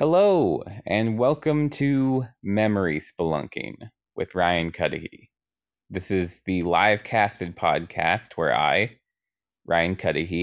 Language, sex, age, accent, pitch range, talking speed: English, male, 20-39, American, 90-110 Hz, 110 wpm